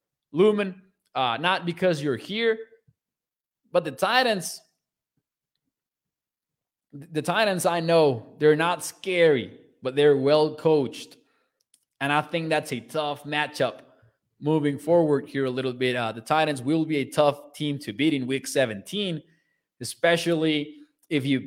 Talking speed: 140 wpm